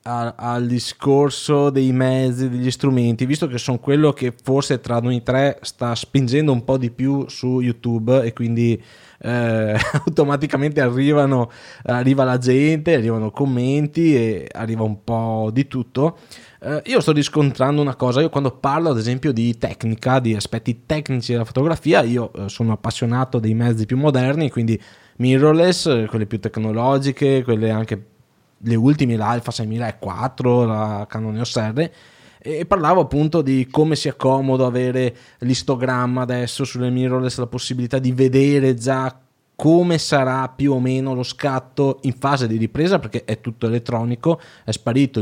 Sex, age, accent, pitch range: male, 20-39, native, 120-145 Hz